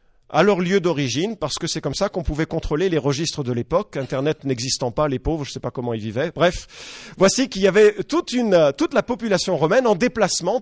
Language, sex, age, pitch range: English, male, 40-59, 140-195 Hz